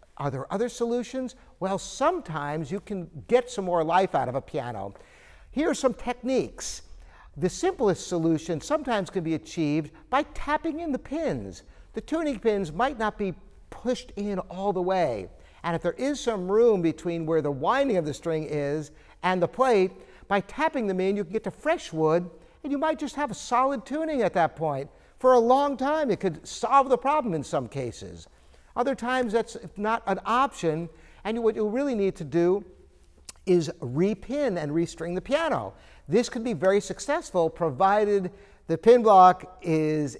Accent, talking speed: American, 180 wpm